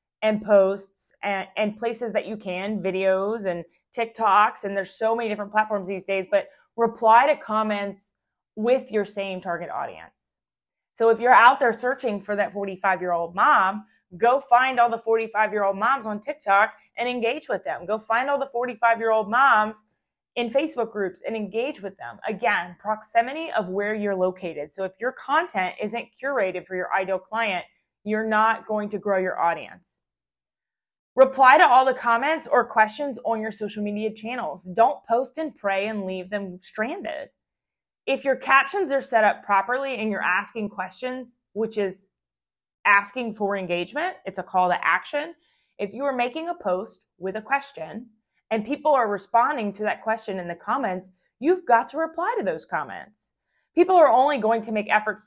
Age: 20-39